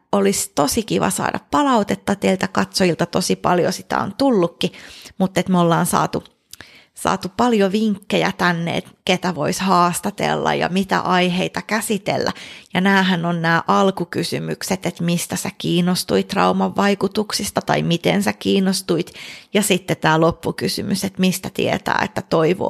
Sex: female